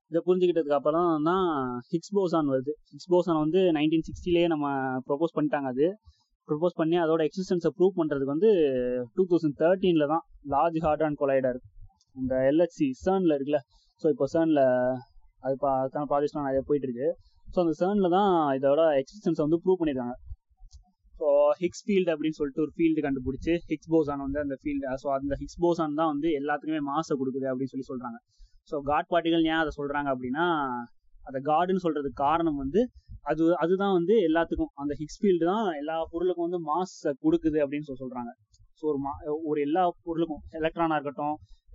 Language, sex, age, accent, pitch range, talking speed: Tamil, male, 20-39, native, 135-165 Hz, 140 wpm